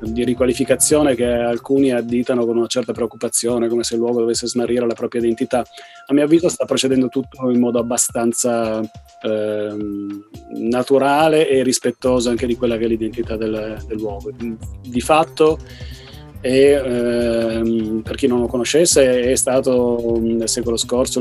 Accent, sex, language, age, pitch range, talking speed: native, male, Italian, 30-49, 115-125 Hz, 155 wpm